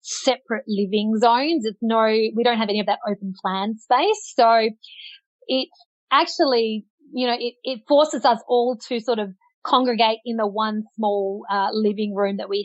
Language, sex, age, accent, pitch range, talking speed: English, female, 30-49, Australian, 205-255 Hz, 175 wpm